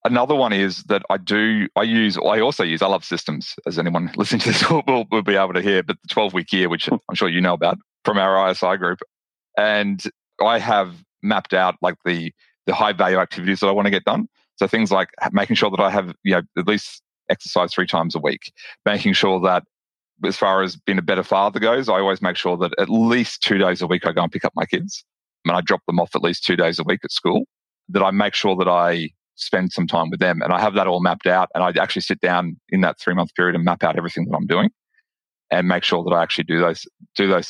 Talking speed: 260 wpm